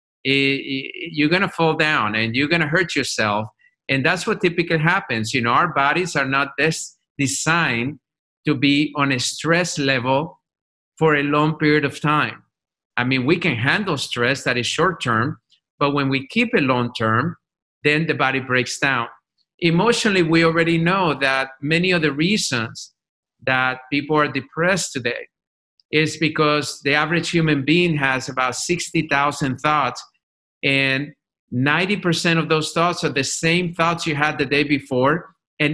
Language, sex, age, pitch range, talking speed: English, male, 50-69, 140-175 Hz, 160 wpm